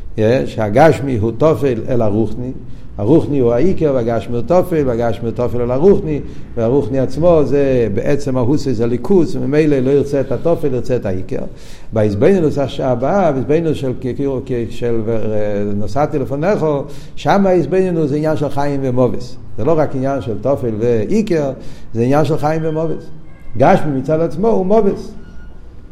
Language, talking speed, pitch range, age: Hebrew, 145 wpm, 130-170 Hz, 60-79